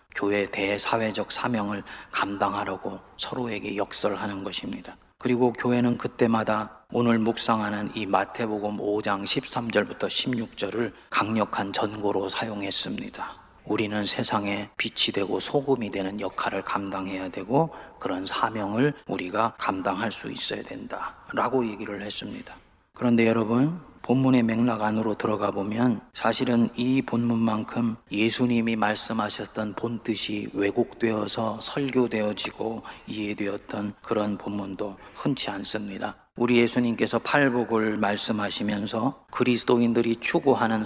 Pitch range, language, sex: 105-120 Hz, Korean, male